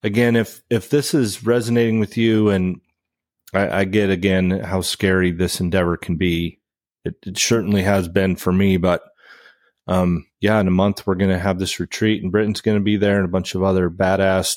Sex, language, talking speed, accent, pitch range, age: male, English, 205 wpm, American, 90-105 Hz, 30-49